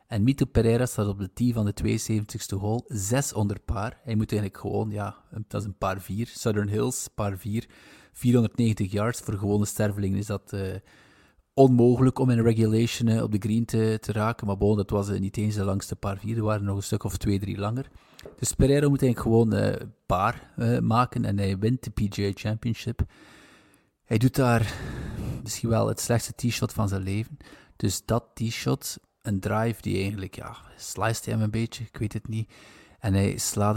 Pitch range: 100-115 Hz